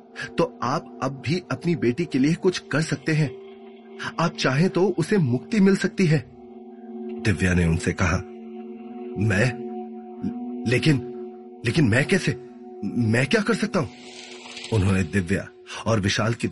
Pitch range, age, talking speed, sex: 100-135 Hz, 30-49, 150 wpm, male